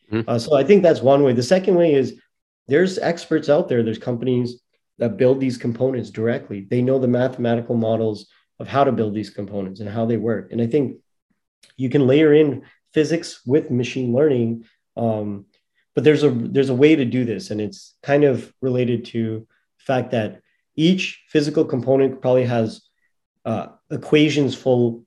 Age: 30-49